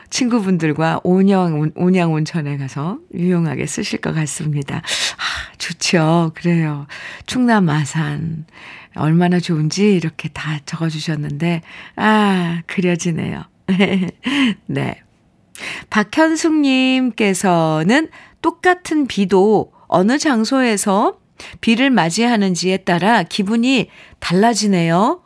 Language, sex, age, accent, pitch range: Korean, female, 50-69, native, 165-215 Hz